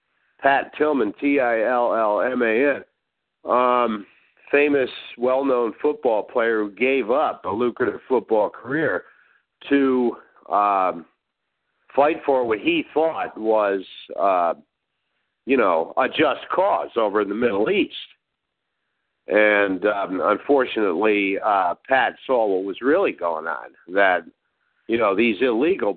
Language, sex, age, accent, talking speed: English, male, 50-69, American, 115 wpm